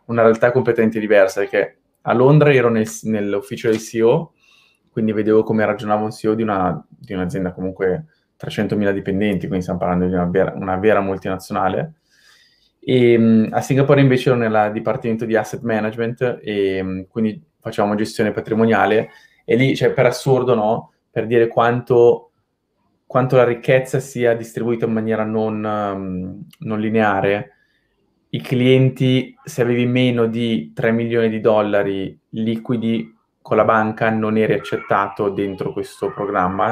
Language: Italian